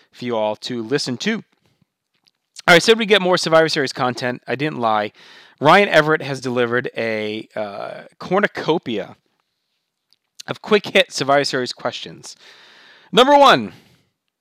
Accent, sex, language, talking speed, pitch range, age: American, male, English, 140 wpm, 125-180 Hz, 30-49